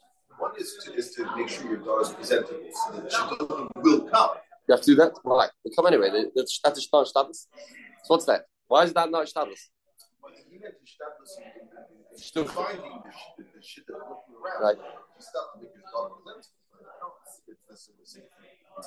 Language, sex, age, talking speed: English, male, 30-49, 110 wpm